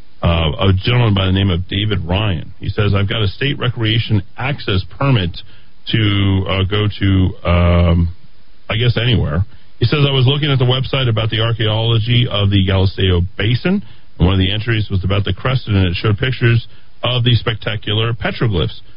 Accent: American